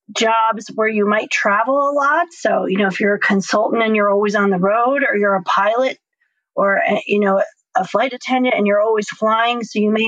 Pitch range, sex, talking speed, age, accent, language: 210-260 Hz, female, 225 wpm, 40-59, American, English